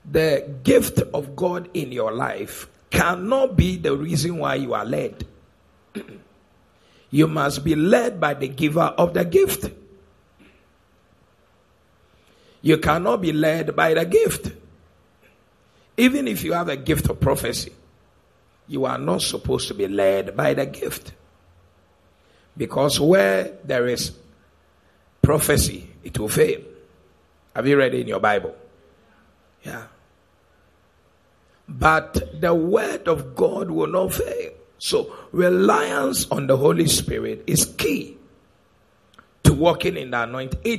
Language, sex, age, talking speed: English, male, 50-69, 130 wpm